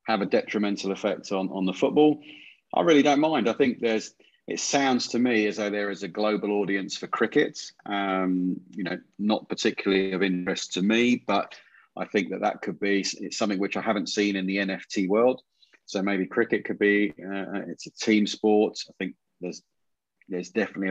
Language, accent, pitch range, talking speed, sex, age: English, British, 95-105 Hz, 200 wpm, male, 30-49